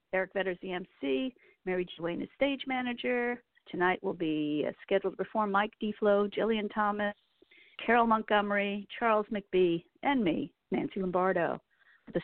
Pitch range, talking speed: 185-255 Hz, 140 wpm